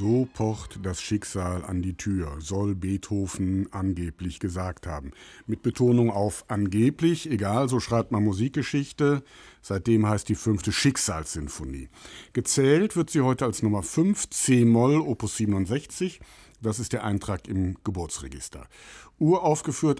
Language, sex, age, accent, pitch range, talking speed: German, male, 60-79, German, 100-130 Hz, 130 wpm